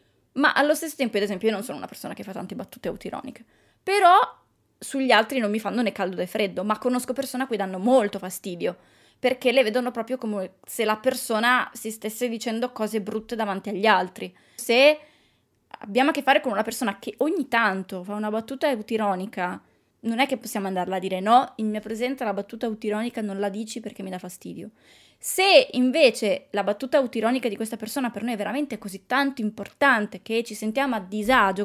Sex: female